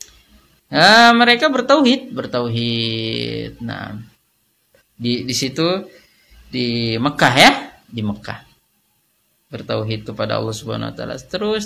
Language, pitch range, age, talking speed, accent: Indonesian, 115-175 Hz, 20-39, 100 wpm, native